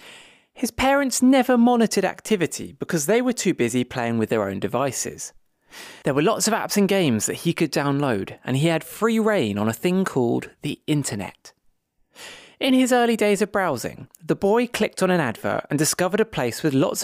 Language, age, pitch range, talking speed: English, 20-39, 130-215 Hz, 195 wpm